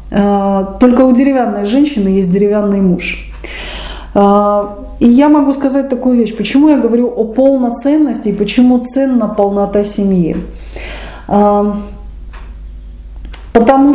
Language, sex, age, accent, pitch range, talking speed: Russian, female, 20-39, native, 200-250 Hz, 100 wpm